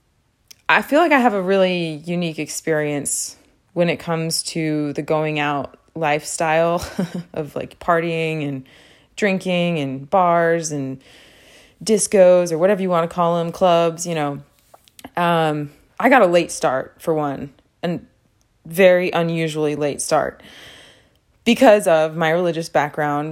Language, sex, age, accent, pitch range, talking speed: English, female, 20-39, American, 145-170 Hz, 140 wpm